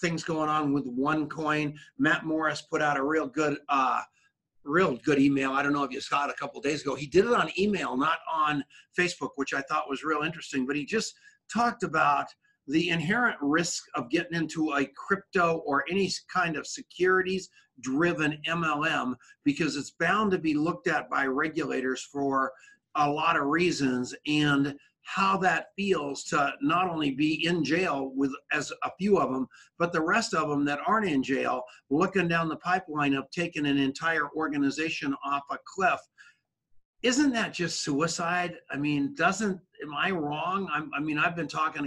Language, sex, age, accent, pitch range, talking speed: English, male, 50-69, American, 145-180 Hz, 185 wpm